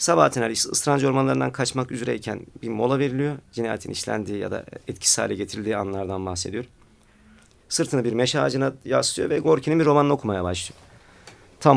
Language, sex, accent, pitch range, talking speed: Turkish, male, native, 95-135 Hz, 155 wpm